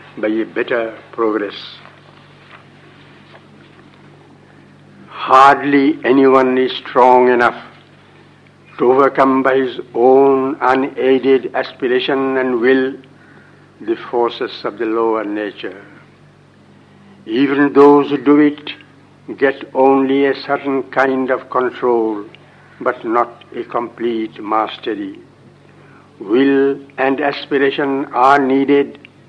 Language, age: English, 60-79